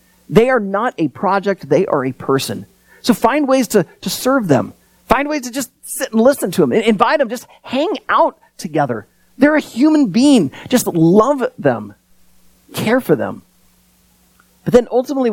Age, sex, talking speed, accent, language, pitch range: 30-49, male, 170 wpm, American, English, 150-235 Hz